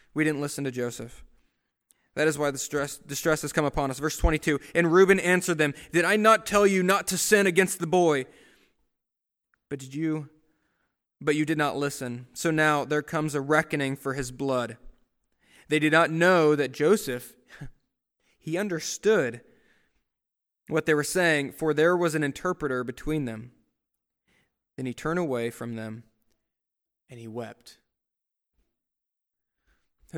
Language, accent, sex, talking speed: English, American, male, 155 wpm